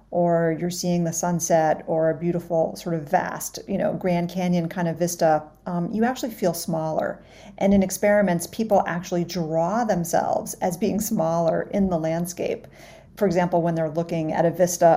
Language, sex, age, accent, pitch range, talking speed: English, female, 40-59, American, 170-205 Hz, 175 wpm